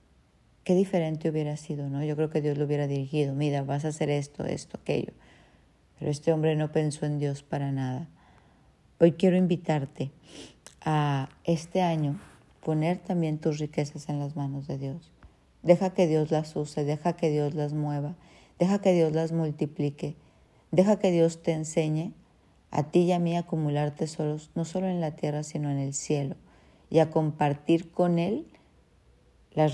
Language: Spanish